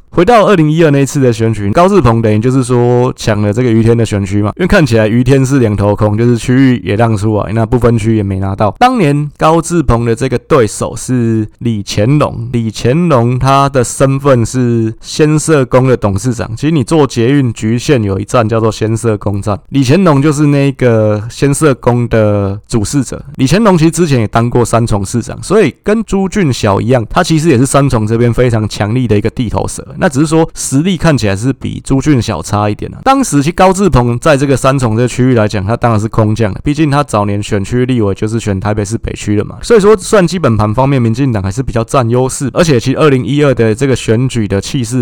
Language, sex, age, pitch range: Chinese, male, 20-39, 110-140 Hz